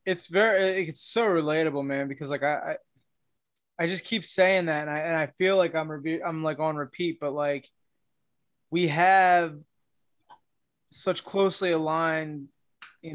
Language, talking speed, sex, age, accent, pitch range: English, 155 wpm, male, 20-39, American, 145-185 Hz